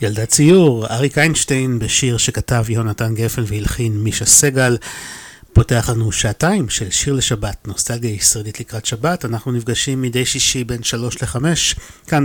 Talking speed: 140 wpm